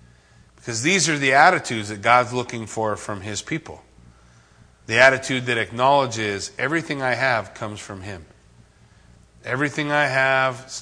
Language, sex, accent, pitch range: English, male, American, 120-165 Hz